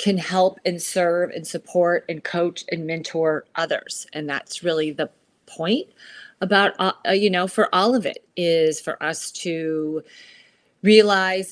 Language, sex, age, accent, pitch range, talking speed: English, female, 30-49, American, 165-220 Hz, 150 wpm